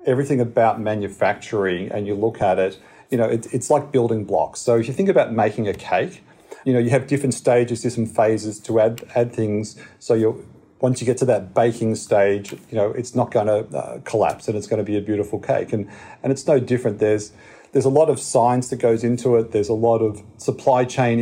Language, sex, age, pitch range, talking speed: English, male, 40-59, 100-120 Hz, 230 wpm